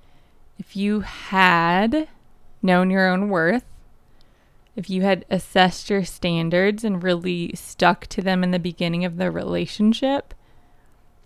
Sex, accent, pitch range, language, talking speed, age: female, American, 190-240 Hz, English, 130 wpm, 20-39